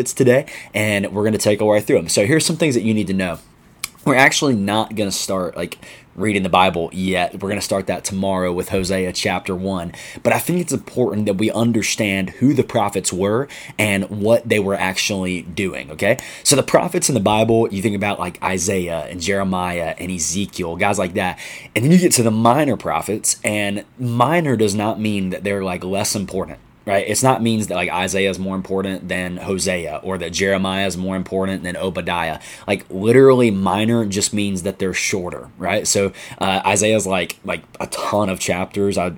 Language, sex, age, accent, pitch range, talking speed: English, male, 20-39, American, 95-110 Hz, 205 wpm